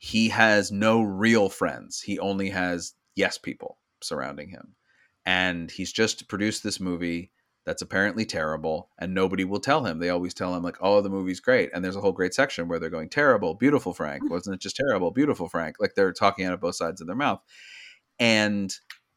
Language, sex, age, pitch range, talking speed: English, male, 30-49, 95-135 Hz, 200 wpm